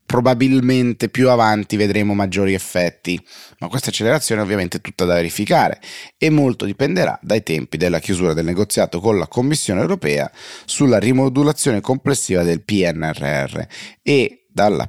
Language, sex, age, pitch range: Italian, male, 30-49, 90-115 Hz